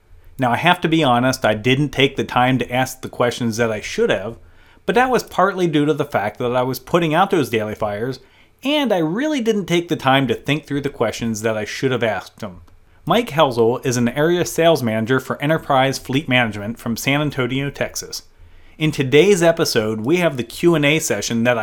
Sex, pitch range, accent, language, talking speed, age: male, 115-155 Hz, American, English, 215 wpm, 30-49